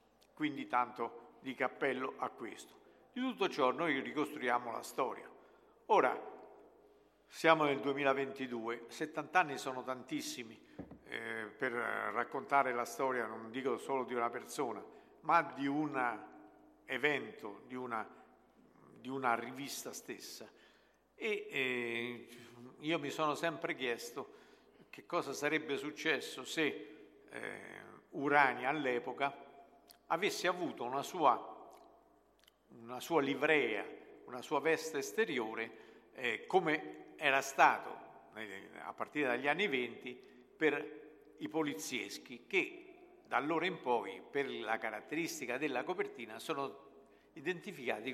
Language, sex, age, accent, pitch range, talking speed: Italian, male, 50-69, native, 125-210 Hz, 115 wpm